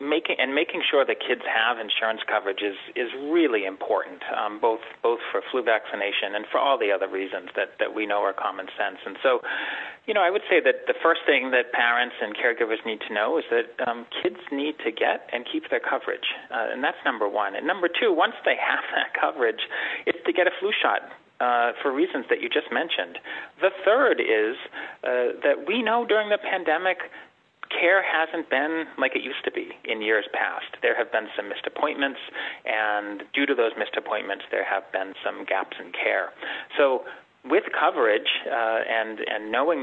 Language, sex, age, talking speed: English, male, 40-59, 200 wpm